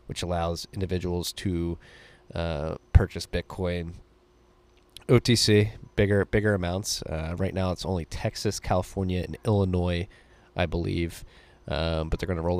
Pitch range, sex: 85-95 Hz, male